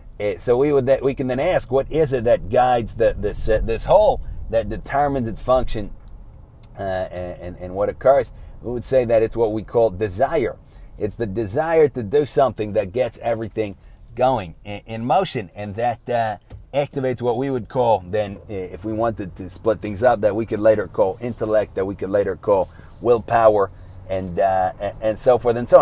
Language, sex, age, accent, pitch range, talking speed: English, male, 40-59, American, 105-130 Hz, 195 wpm